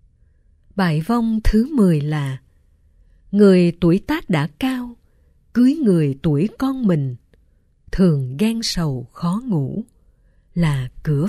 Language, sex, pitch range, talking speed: Vietnamese, female, 120-205 Hz, 115 wpm